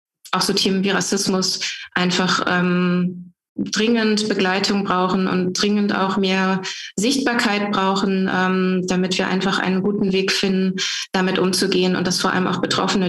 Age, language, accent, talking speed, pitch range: 20-39, German, German, 145 wpm, 185-205 Hz